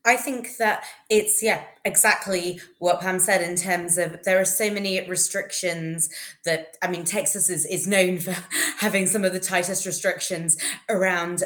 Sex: female